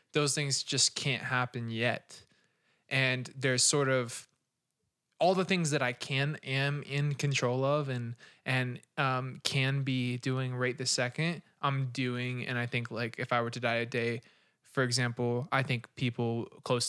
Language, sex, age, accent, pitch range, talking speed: English, male, 20-39, American, 120-145 Hz, 170 wpm